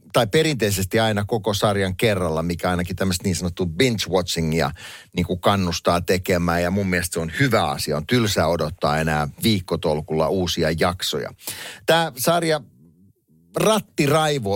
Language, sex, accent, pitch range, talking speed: Finnish, male, native, 90-110 Hz, 130 wpm